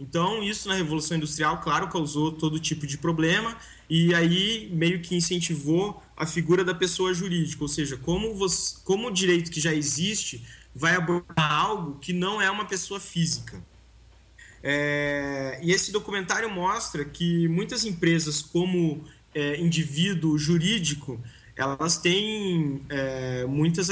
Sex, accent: male, Brazilian